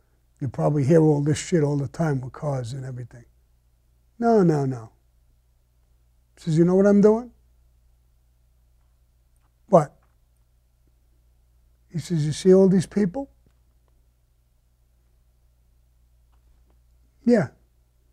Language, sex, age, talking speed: English, male, 60-79, 105 wpm